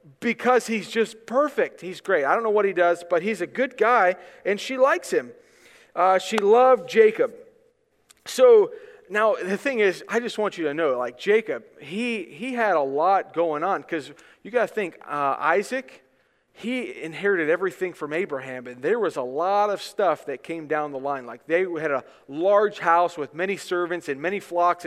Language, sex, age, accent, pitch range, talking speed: English, male, 40-59, American, 155-260 Hz, 195 wpm